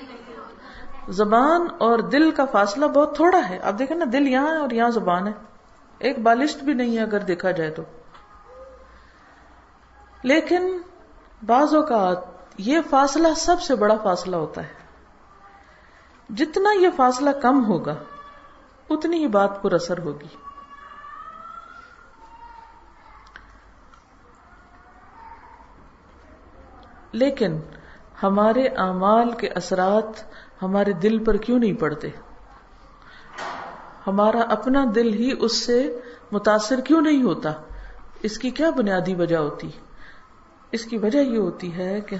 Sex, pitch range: female, 195-285 Hz